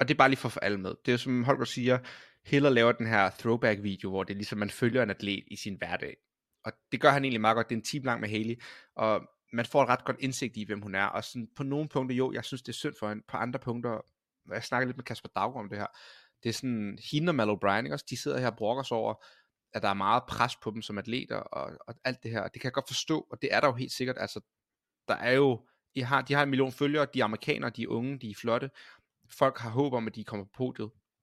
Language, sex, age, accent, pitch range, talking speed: Danish, male, 30-49, native, 110-130 Hz, 290 wpm